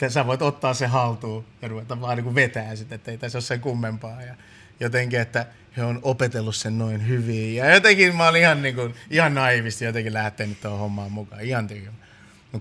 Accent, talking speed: native, 190 wpm